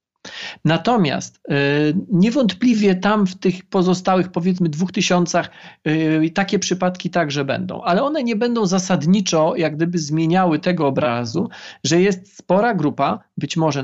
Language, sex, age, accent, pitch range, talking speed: Polish, male, 40-59, native, 155-205 Hz, 125 wpm